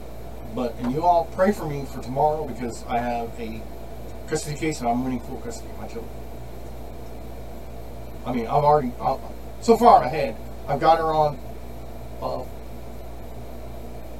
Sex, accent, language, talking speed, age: male, American, English, 150 wpm, 40-59